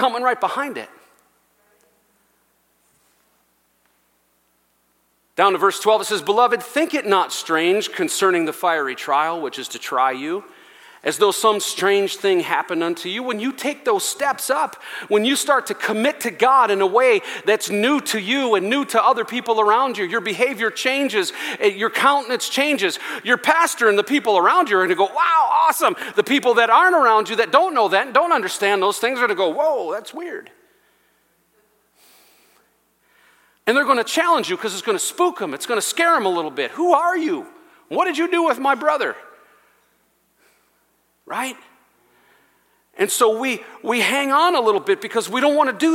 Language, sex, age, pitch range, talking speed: English, male, 40-59, 210-335 Hz, 190 wpm